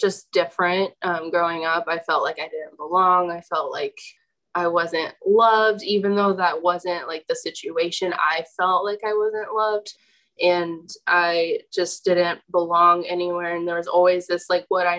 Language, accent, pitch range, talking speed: English, American, 175-205 Hz, 175 wpm